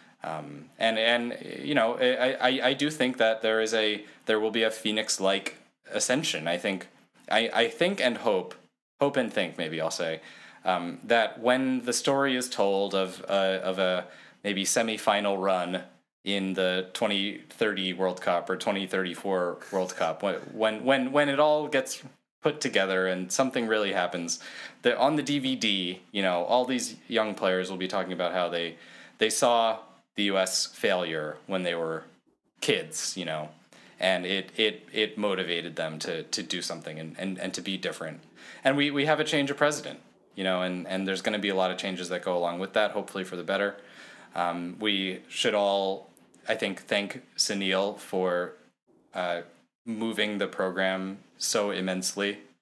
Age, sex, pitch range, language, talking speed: 20-39, male, 95-110 Hz, English, 180 wpm